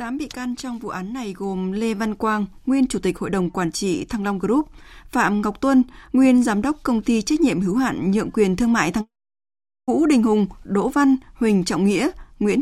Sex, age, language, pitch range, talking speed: female, 20-39, Vietnamese, 195-245 Hz, 225 wpm